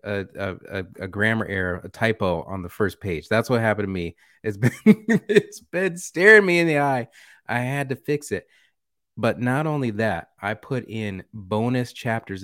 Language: English